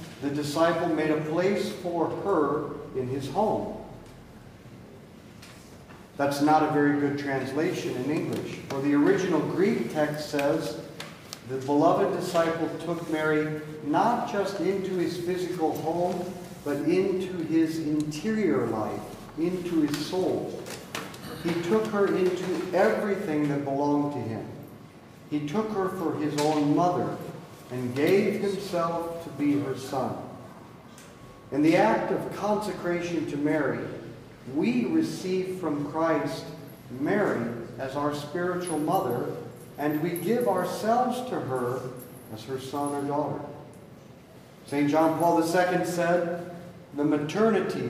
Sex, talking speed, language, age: male, 125 wpm, English, 50-69